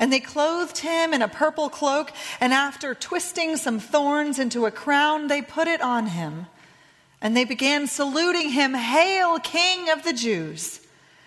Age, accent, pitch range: 30-49, American, 205-285 Hz